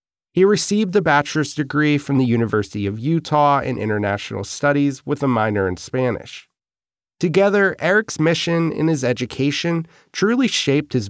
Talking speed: 145 wpm